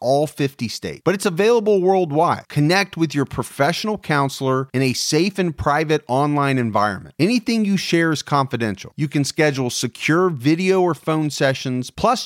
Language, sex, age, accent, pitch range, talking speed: English, male, 40-59, American, 135-180 Hz, 160 wpm